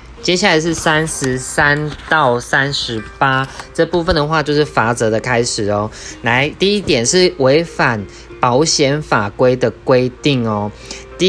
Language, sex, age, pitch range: Chinese, male, 20-39, 115-155 Hz